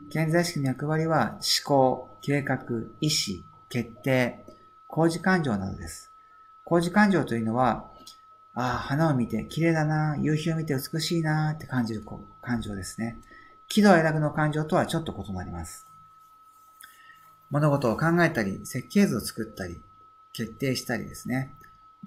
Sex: male